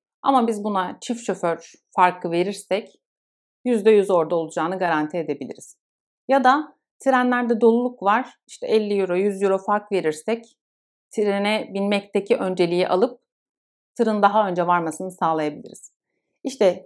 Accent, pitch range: native, 175-230 Hz